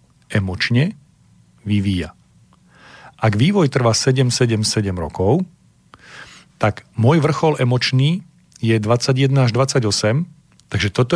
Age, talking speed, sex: 40-59, 90 wpm, male